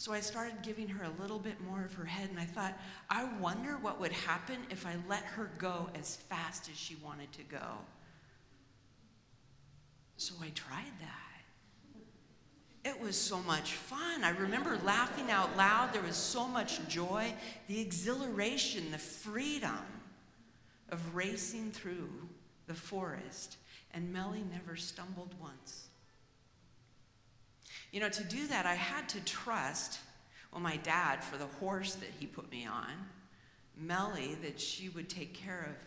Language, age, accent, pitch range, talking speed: English, 50-69, American, 150-200 Hz, 155 wpm